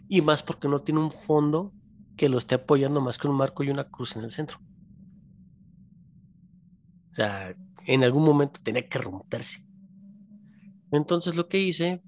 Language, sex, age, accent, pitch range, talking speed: Spanish, male, 30-49, Mexican, 135-185 Hz, 165 wpm